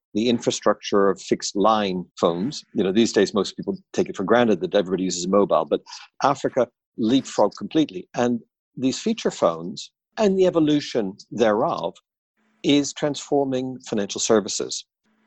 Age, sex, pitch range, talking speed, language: 50-69, male, 115-165 Hz, 140 wpm, English